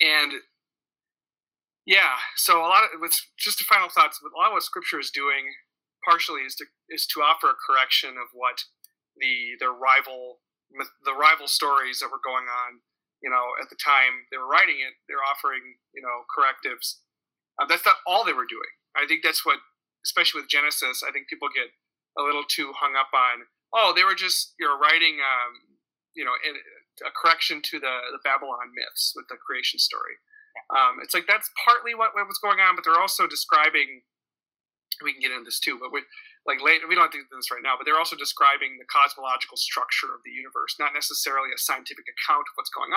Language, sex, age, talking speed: English, male, 40-59, 210 wpm